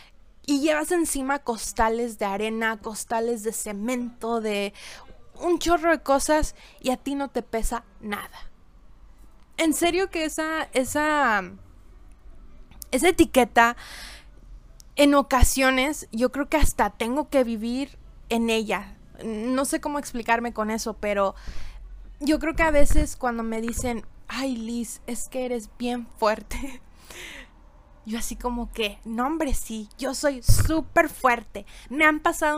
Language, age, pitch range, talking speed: Spanish, 20-39, 225-295 Hz, 140 wpm